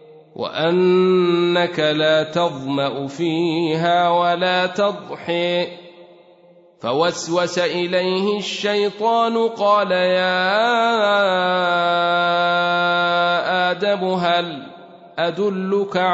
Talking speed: 50 wpm